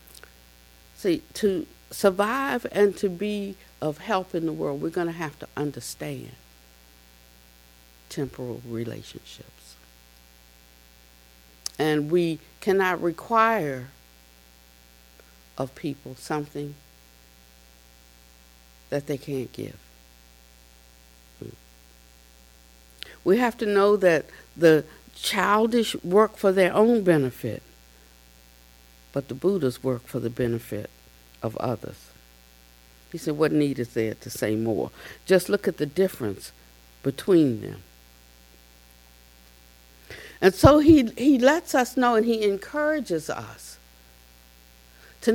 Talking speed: 105 wpm